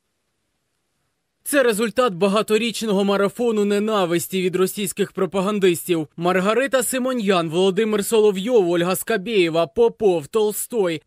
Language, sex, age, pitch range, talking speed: Russian, male, 20-39, 185-225 Hz, 85 wpm